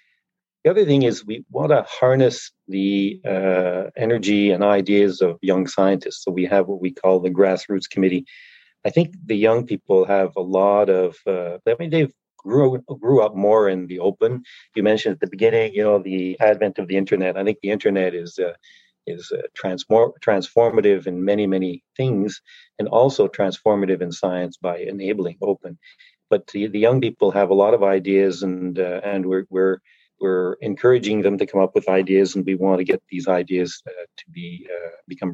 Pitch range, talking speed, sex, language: 95-115 Hz, 195 wpm, male, English